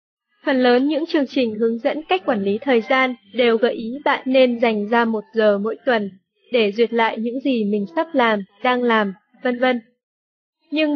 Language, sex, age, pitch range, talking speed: Vietnamese, female, 20-39, 225-275 Hz, 195 wpm